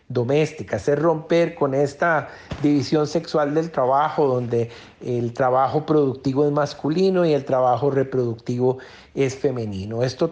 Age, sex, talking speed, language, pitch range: 50-69, male, 130 wpm, Spanish, 130-160 Hz